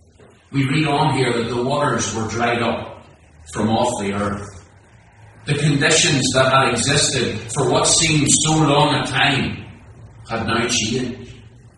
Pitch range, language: 115-150 Hz, English